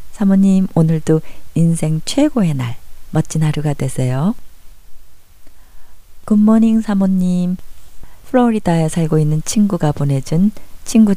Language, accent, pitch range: Korean, native, 130-190 Hz